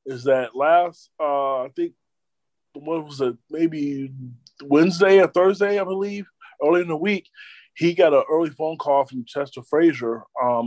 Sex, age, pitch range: male, 20-39, 120-145 Hz